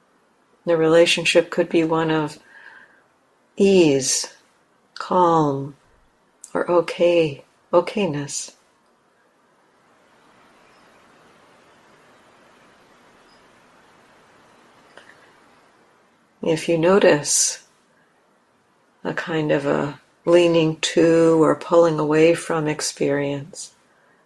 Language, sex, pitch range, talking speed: English, female, 155-180 Hz, 60 wpm